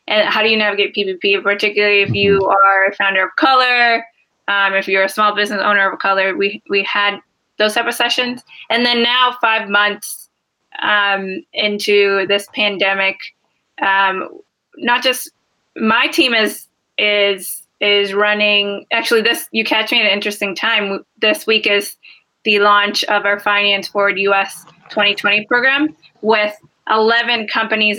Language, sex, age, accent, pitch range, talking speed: English, female, 20-39, American, 200-220 Hz, 160 wpm